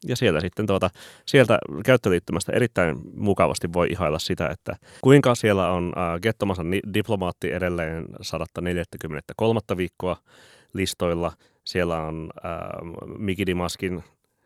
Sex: male